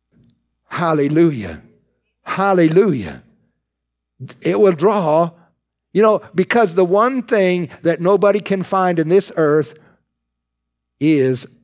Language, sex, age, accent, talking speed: English, male, 60-79, American, 100 wpm